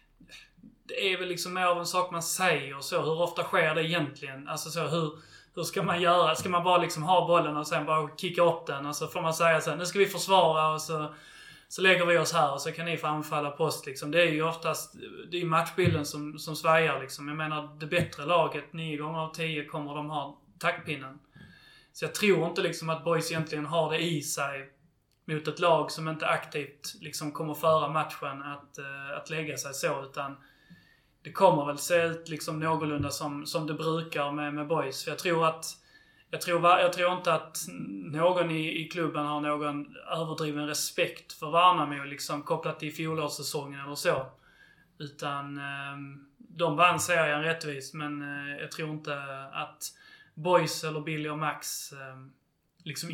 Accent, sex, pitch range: native, male, 150-170 Hz